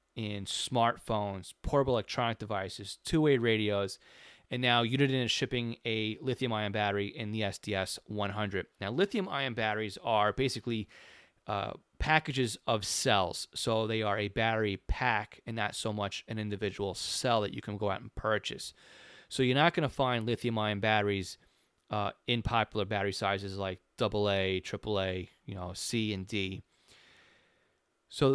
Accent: American